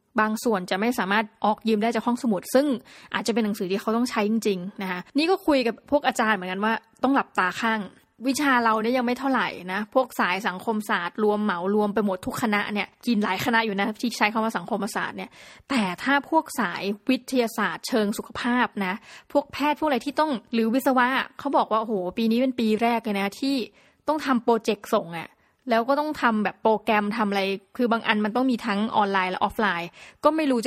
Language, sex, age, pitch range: Thai, female, 20-39, 210-245 Hz